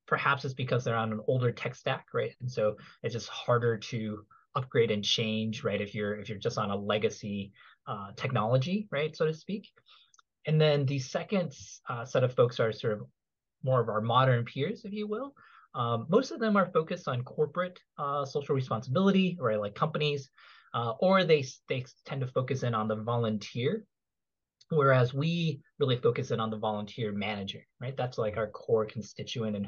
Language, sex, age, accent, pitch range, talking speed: English, male, 20-39, American, 110-155 Hz, 190 wpm